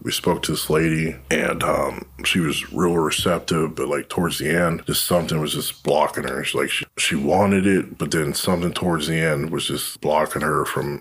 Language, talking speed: English, 205 wpm